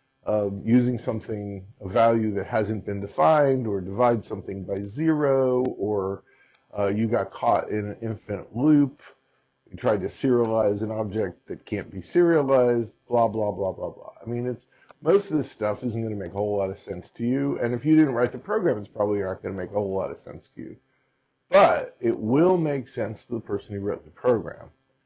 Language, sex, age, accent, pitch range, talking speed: English, male, 50-69, American, 105-125 Hz, 205 wpm